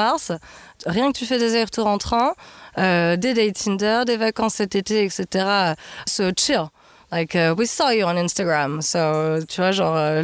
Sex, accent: female, French